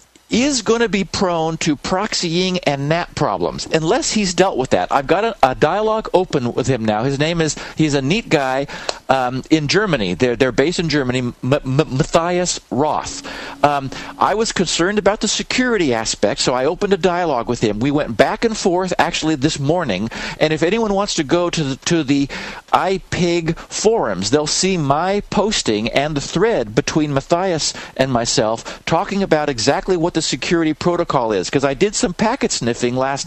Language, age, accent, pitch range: English, 50-69, American, 140-190 Hz